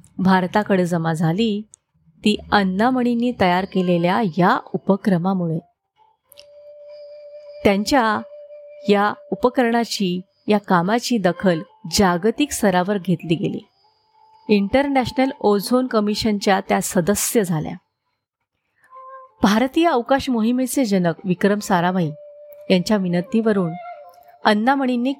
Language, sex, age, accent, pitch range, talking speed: Marathi, female, 30-49, native, 190-260 Hz, 80 wpm